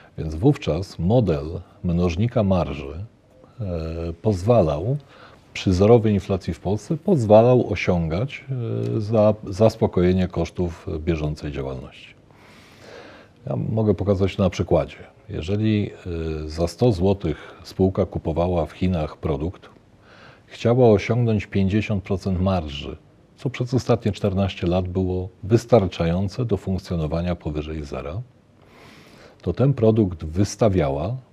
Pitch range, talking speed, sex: 85-110 Hz, 100 wpm, male